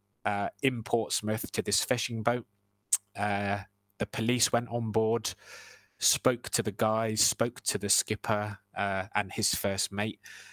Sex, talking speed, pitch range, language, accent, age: male, 150 wpm, 100-115 Hz, English, British, 20-39